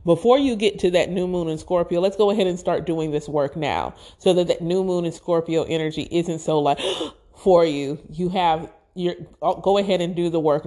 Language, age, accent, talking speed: English, 30-49, American, 225 wpm